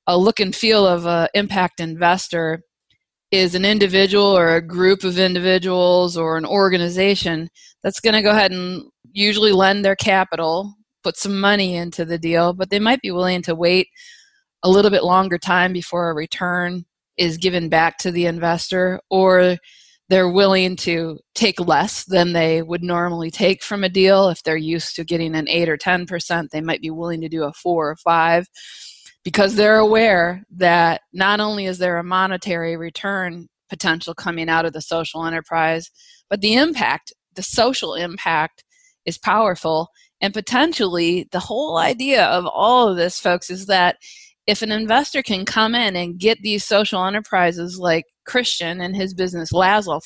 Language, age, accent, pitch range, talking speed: English, 20-39, American, 170-205 Hz, 175 wpm